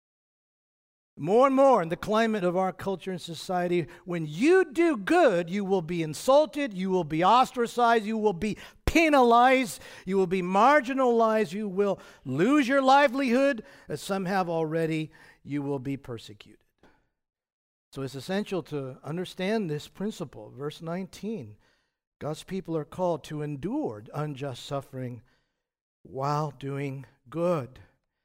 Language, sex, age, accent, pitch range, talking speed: English, male, 50-69, American, 165-245 Hz, 135 wpm